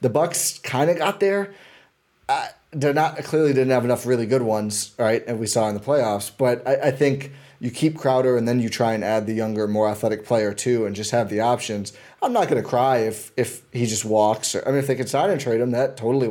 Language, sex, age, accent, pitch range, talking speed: English, male, 20-39, American, 110-135 Hz, 255 wpm